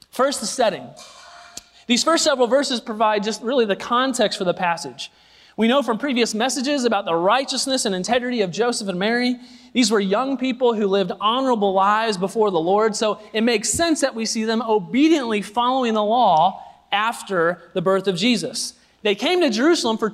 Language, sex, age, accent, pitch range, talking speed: English, male, 30-49, American, 190-250 Hz, 185 wpm